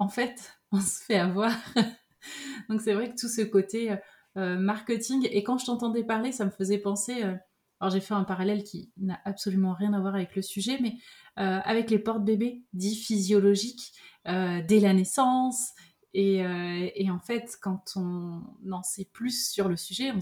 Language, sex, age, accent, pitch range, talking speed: French, female, 30-49, French, 190-225 Hz, 195 wpm